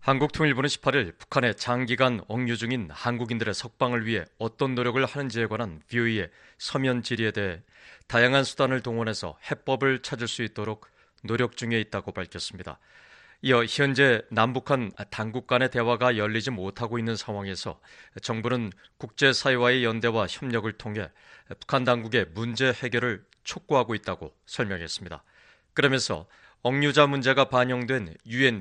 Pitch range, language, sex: 110-135 Hz, Korean, male